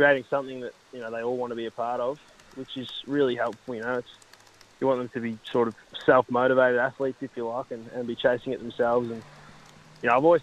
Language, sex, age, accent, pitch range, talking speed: English, male, 20-39, Australian, 115-130 Hz, 245 wpm